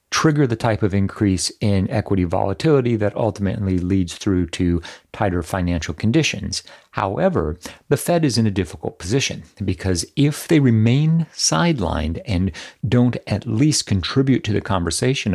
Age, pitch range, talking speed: 40-59, 85-115 Hz, 145 wpm